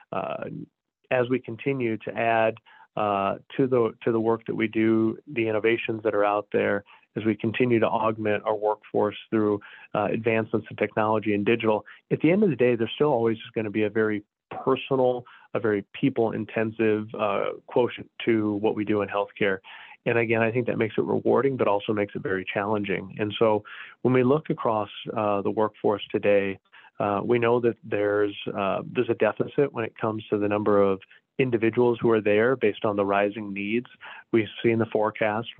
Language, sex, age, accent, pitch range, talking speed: English, male, 40-59, American, 105-115 Hz, 195 wpm